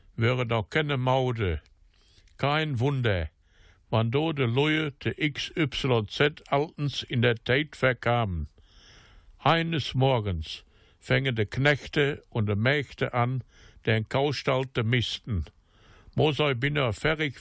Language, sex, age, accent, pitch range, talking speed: German, male, 60-79, German, 105-145 Hz, 115 wpm